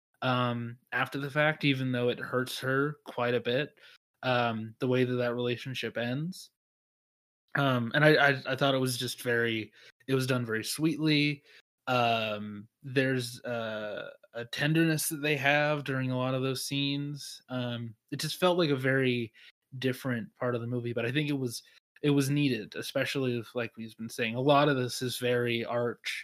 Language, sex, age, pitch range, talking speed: English, male, 20-39, 120-140 Hz, 185 wpm